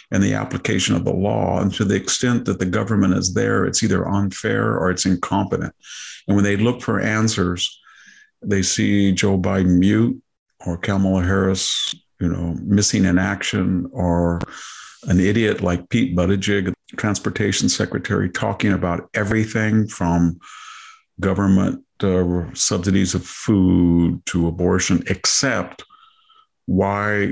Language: English